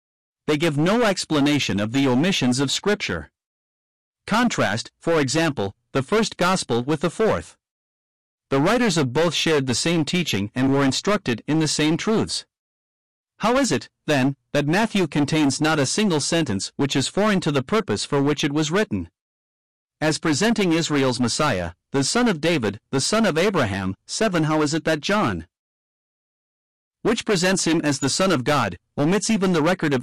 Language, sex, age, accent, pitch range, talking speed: English, male, 50-69, American, 125-170 Hz, 170 wpm